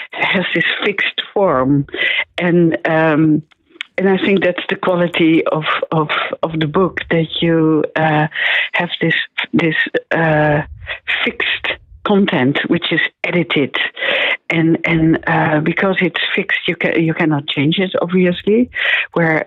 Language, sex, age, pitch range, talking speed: Finnish, female, 60-79, 160-180 Hz, 135 wpm